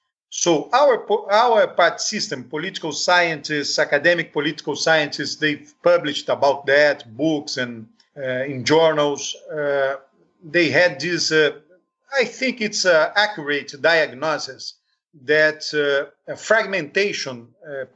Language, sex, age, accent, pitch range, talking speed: English, male, 50-69, Brazilian, 150-190 Hz, 115 wpm